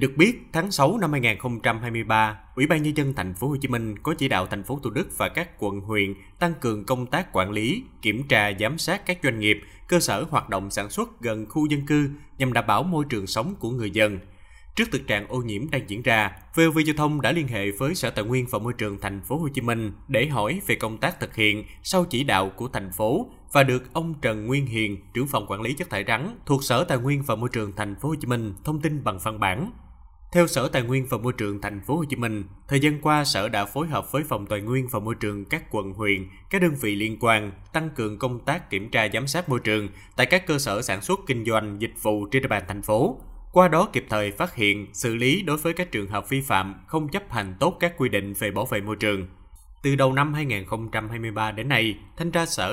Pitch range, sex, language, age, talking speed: 105-145 Hz, male, Vietnamese, 20-39, 255 wpm